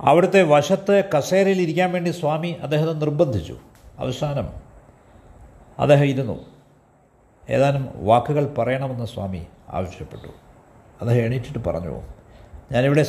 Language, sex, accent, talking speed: Malayalam, male, native, 90 wpm